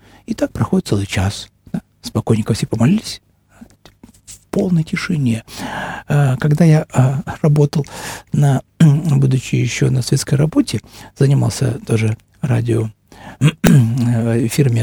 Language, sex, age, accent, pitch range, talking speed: Russian, male, 50-69, native, 115-145 Hz, 95 wpm